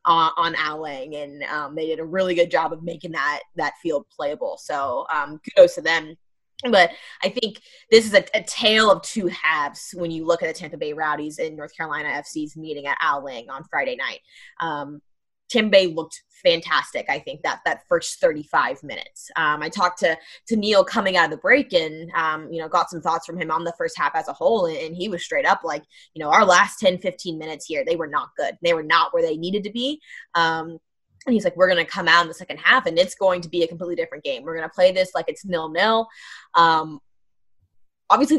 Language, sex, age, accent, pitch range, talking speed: English, female, 20-39, American, 160-235 Hz, 235 wpm